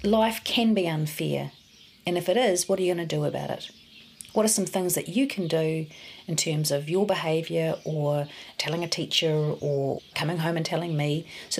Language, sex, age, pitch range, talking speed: English, female, 40-59, 160-200 Hz, 205 wpm